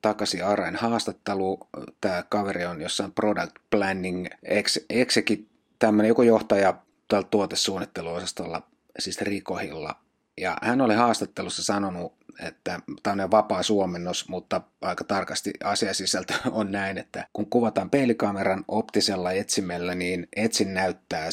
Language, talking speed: Finnish, 120 wpm